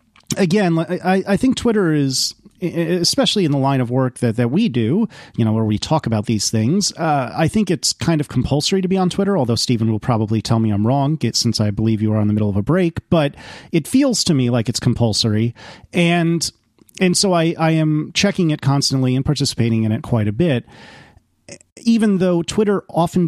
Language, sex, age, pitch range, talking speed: English, male, 30-49, 115-170 Hz, 205 wpm